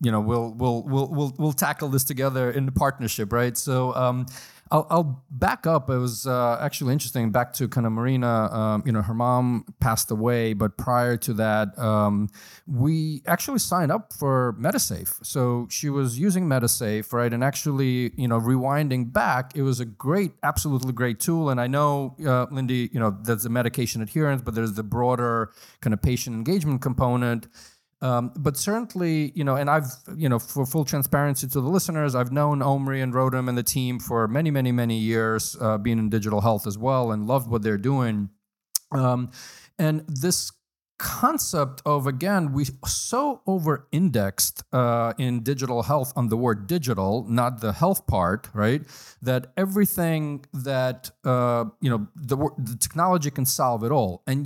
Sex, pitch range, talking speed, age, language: male, 120-150 Hz, 180 wpm, 40-59, English